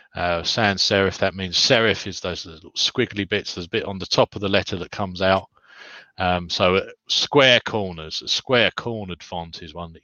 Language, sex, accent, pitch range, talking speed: English, male, British, 95-110 Hz, 205 wpm